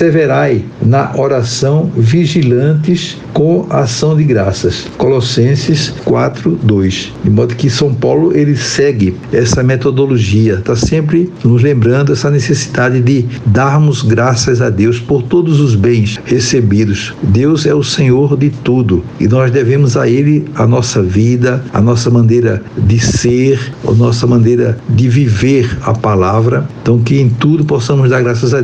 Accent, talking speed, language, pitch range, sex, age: Brazilian, 145 wpm, Portuguese, 115-145 Hz, male, 60-79